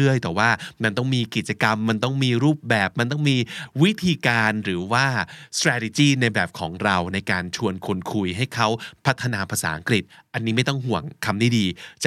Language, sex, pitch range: Thai, male, 105-140 Hz